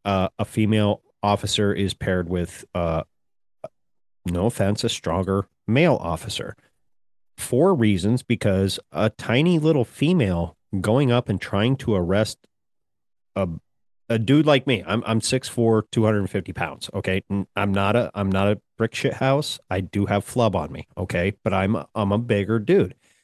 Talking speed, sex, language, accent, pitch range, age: 160 wpm, male, English, American, 100-135 Hz, 30-49